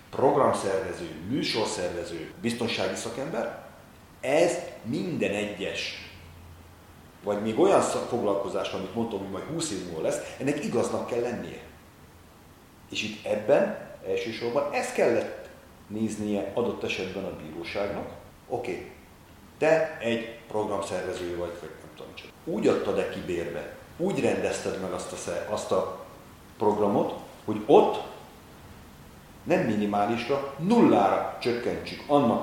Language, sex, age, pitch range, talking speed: Hungarian, male, 40-59, 90-115 Hz, 110 wpm